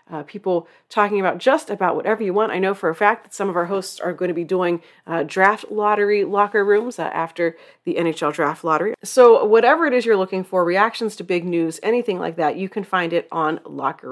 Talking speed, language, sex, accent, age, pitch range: 235 wpm, English, female, American, 30-49, 185-270 Hz